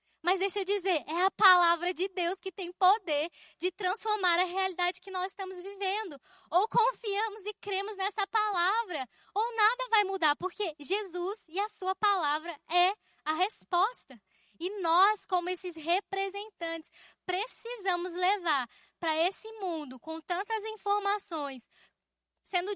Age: 10-29